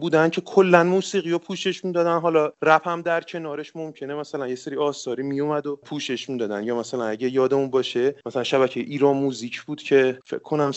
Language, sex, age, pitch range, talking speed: Persian, male, 30-49, 140-170 Hz, 195 wpm